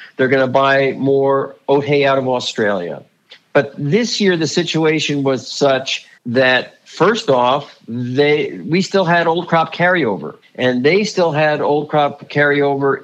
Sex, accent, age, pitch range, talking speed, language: male, American, 50-69, 135-170 Hz, 155 wpm, English